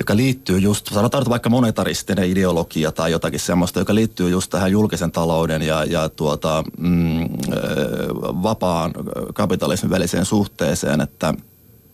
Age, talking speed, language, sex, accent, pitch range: 30-49, 125 wpm, Finnish, male, native, 90-110 Hz